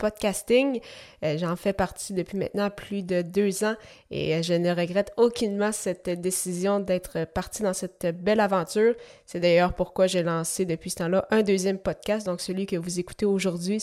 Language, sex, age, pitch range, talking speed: French, female, 20-39, 180-205 Hz, 175 wpm